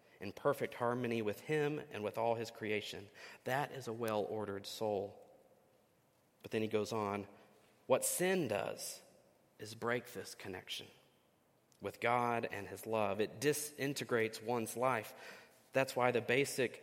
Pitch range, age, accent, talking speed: 110-135 Hz, 40-59, American, 145 wpm